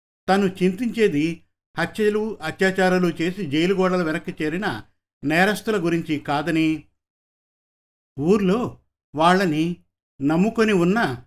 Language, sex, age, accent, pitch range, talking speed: Telugu, male, 50-69, native, 145-190 Hz, 80 wpm